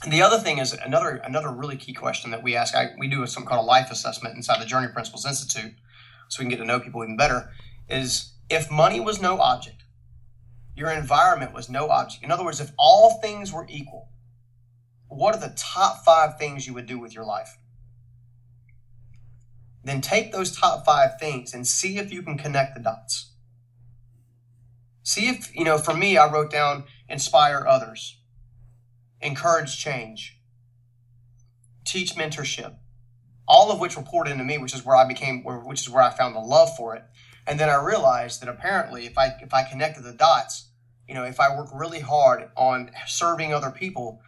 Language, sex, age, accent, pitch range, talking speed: English, male, 30-49, American, 120-150 Hz, 185 wpm